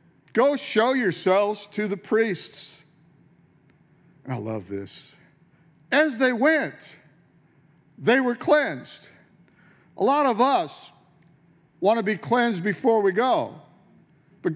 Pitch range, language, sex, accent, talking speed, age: 175-250 Hz, English, male, American, 110 wpm, 50-69